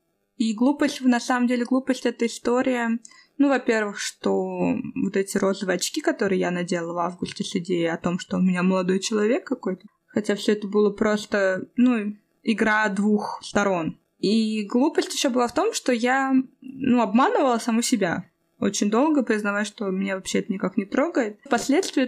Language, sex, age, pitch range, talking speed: Russian, female, 20-39, 205-260 Hz, 170 wpm